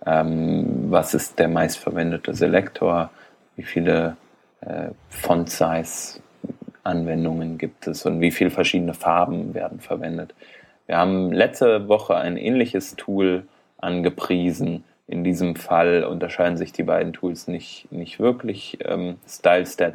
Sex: male